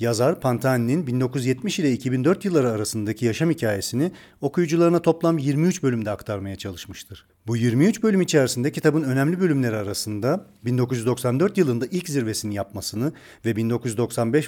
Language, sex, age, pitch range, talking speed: Turkish, male, 40-59, 115-155 Hz, 125 wpm